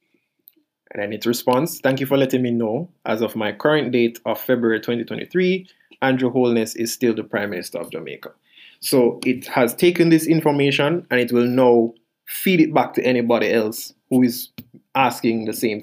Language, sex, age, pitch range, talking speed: English, male, 20-39, 115-140 Hz, 180 wpm